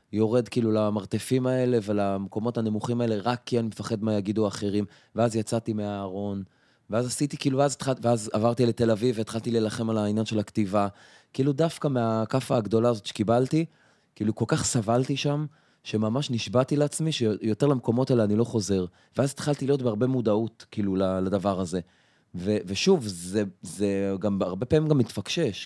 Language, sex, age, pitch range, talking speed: Hebrew, male, 20-39, 105-130 Hz, 160 wpm